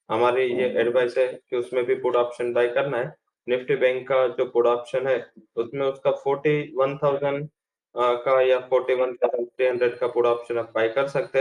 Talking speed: 170 wpm